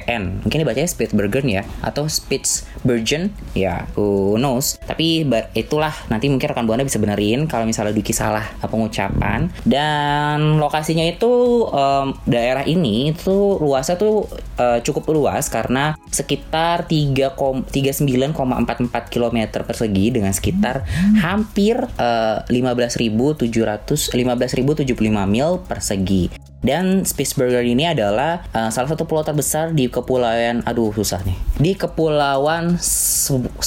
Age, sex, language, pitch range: 20-39, female, Indonesian, 105-145 Hz